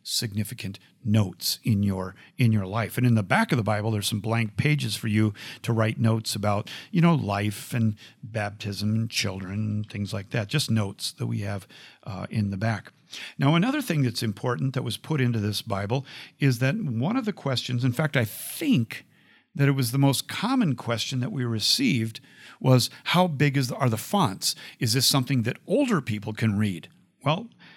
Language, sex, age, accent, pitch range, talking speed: English, male, 50-69, American, 110-135 Hz, 200 wpm